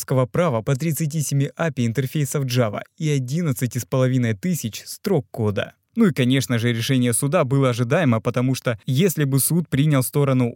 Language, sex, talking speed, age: Russian, male, 135 wpm, 20-39